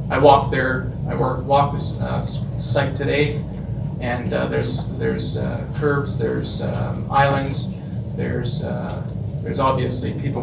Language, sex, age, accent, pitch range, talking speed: English, male, 30-49, American, 125-145 Hz, 130 wpm